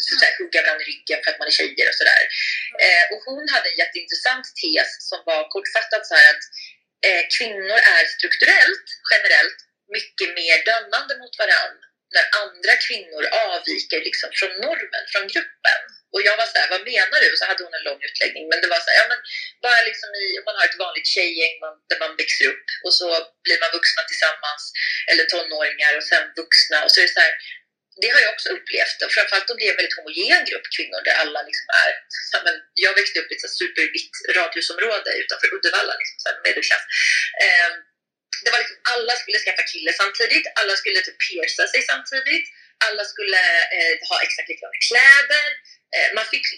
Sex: female